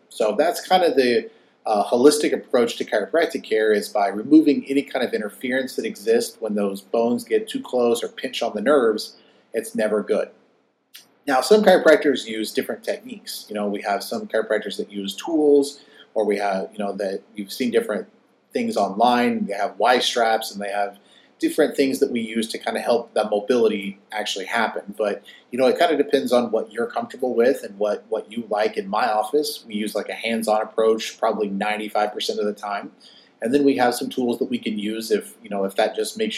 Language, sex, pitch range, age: English, male, 105-150 Hz, 30-49